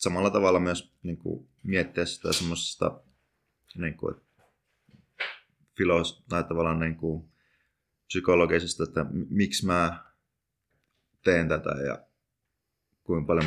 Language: Finnish